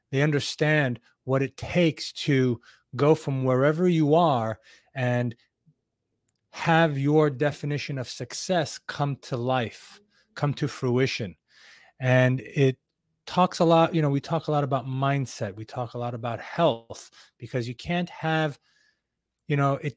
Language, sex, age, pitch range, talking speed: English, male, 30-49, 125-160 Hz, 145 wpm